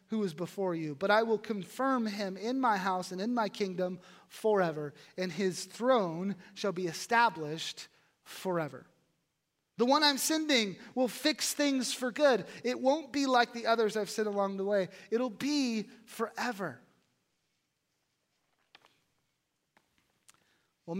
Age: 30-49